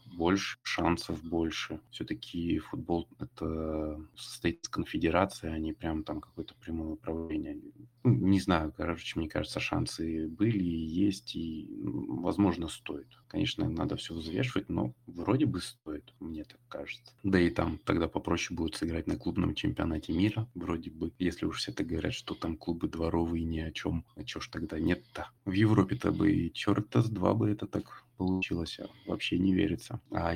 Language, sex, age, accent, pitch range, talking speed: Russian, male, 30-49, native, 80-95 Hz, 165 wpm